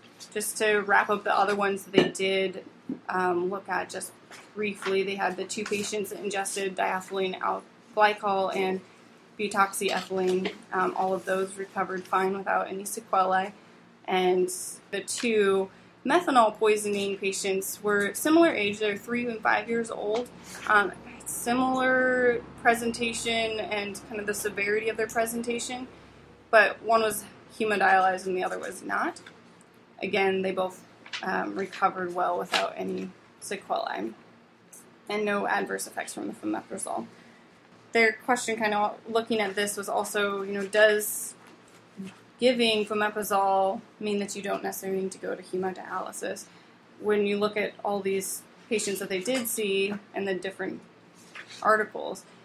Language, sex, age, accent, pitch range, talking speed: English, female, 20-39, American, 195-215 Hz, 140 wpm